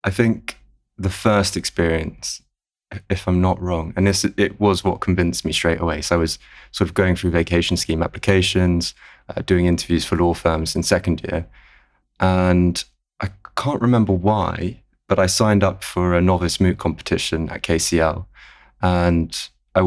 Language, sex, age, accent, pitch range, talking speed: English, male, 20-39, British, 85-95 Hz, 165 wpm